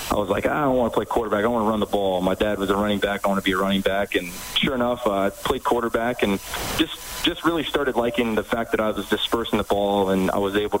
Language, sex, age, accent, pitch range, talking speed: English, male, 30-49, American, 100-110 Hz, 290 wpm